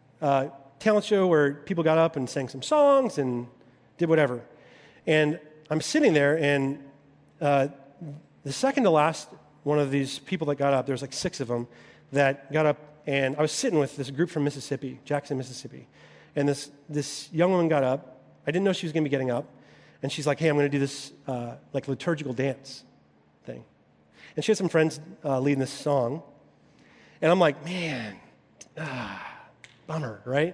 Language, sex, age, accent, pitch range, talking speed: English, male, 30-49, American, 135-155 Hz, 195 wpm